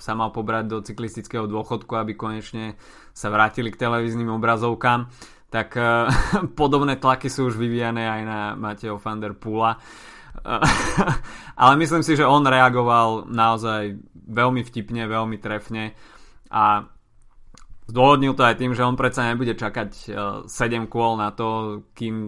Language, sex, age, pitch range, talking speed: Slovak, male, 20-39, 110-120 Hz, 145 wpm